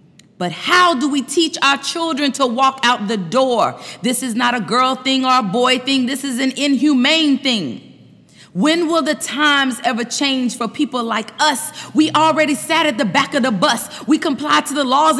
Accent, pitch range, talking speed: American, 230-295 Hz, 200 wpm